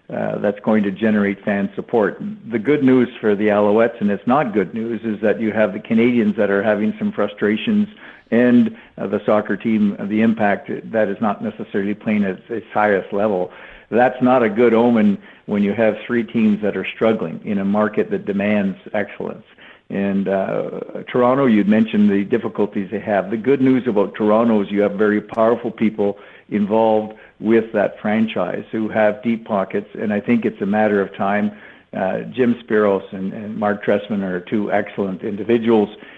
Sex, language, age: male, English, 50-69